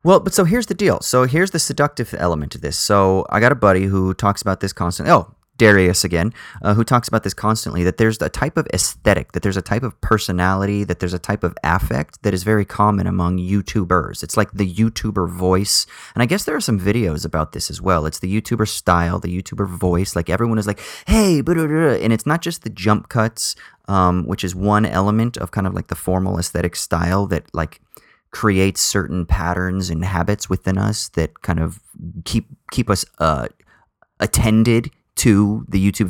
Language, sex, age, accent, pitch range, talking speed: English, male, 30-49, American, 85-110 Hz, 205 wpm